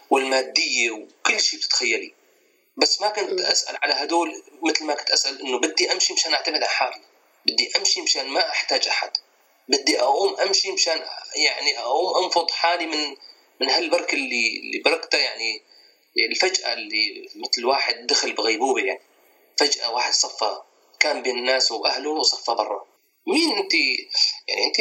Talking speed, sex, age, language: 150 wpm, male, 30-49, Arabic